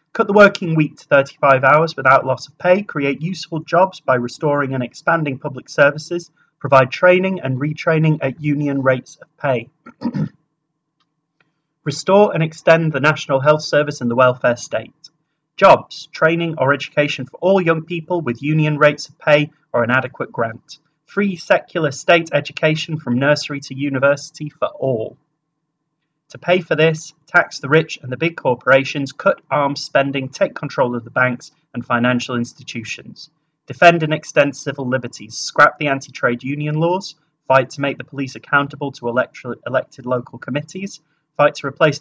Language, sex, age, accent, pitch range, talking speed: English, male, 30-49, British, 135-155 Hz, 160 wpm